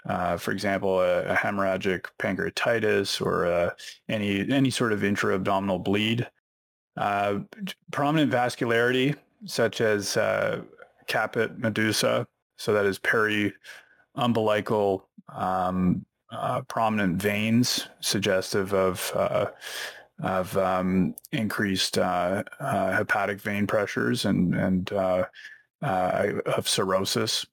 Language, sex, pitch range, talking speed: English, male, 100-125 Hz, 110 wpm